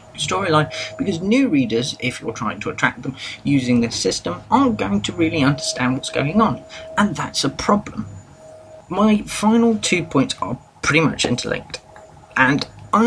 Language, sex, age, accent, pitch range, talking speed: English, male, 30-49, British, 120-180 Hz, 160 wpm